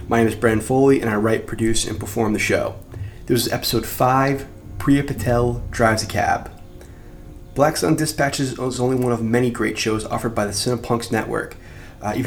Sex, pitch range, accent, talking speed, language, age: male, 110-135 Hz, American, 190 wpm, English, 20-39